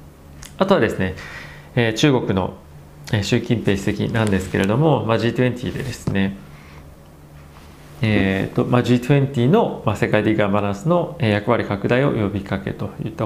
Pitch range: 95-120 Hz